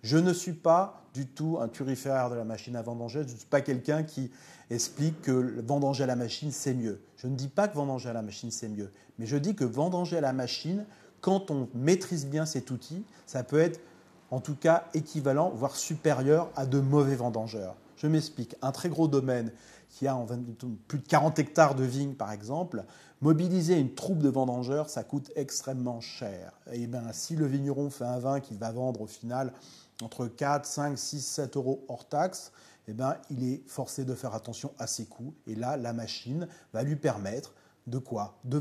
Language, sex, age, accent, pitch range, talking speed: French, male, 40-59, French, 120-155 Hz, 210 wpm